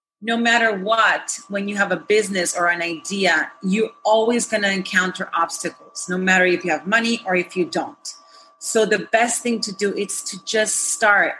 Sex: female